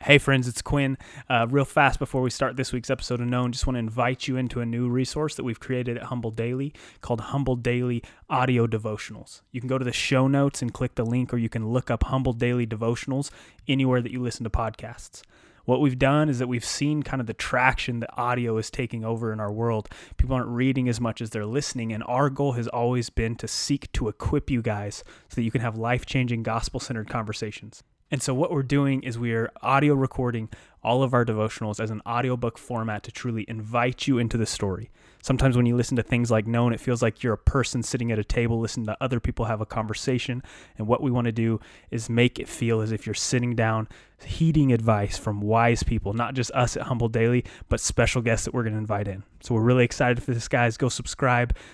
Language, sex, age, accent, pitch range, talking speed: English, male, 20-39, American, 115-130 Hz, 230 wpm